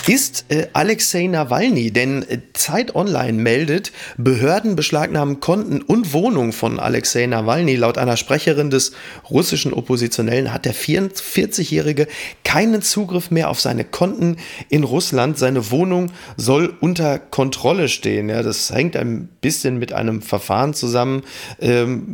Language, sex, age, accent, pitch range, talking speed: German, male, 40-59, German, 120-155 Hz, 135 wpm